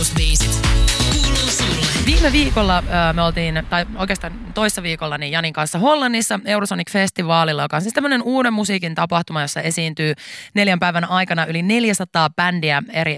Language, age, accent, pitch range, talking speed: Finnish, 20-39, native, 150-190 Hz, 135 wpm